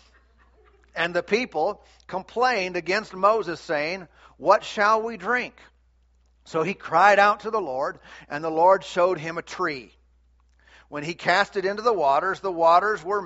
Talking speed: 160 wpm